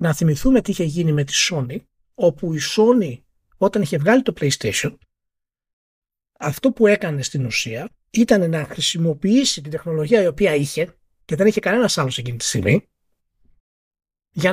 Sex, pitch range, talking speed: male, 145-200 Hz, 155 wpm